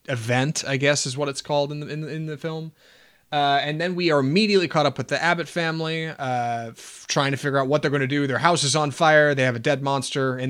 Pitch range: 125-150 Hz